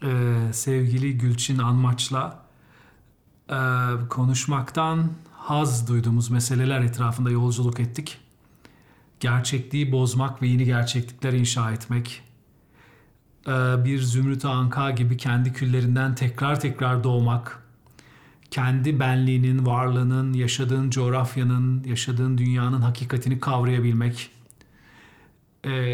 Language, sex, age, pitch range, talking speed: Turkish, male, 40-59, 125-145 Hz, 90 wpm